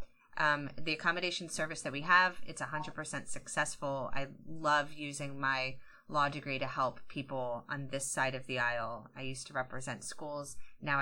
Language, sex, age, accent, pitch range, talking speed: English, female, 30-49, American, 140-185 Hz, 170 wpm